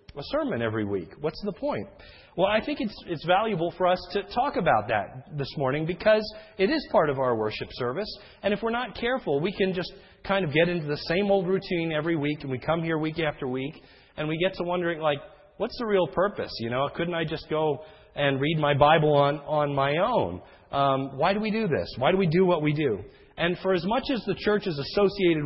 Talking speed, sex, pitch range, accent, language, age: 235 wpm, male, 150-200 Hz, American, English, 40-59